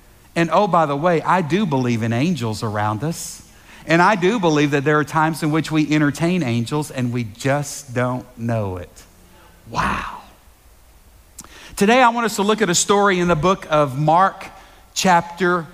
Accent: American